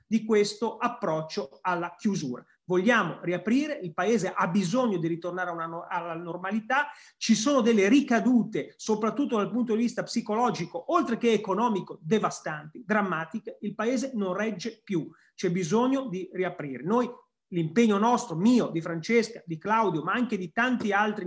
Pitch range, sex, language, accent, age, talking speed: 180-235 Hz, male, Italian, native, 30-49, 145 wpm